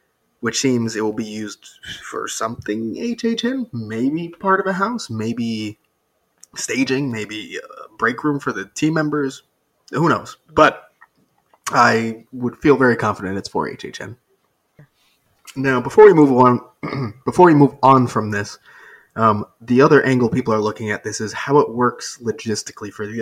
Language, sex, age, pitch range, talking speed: English, male, 20-39, 115-190 Hz, 170 wpm